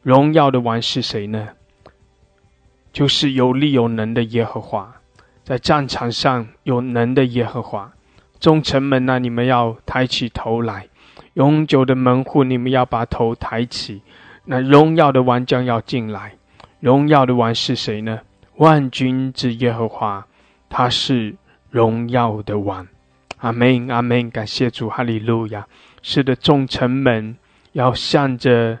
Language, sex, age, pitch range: English, male, 20-39, 110-135 Hz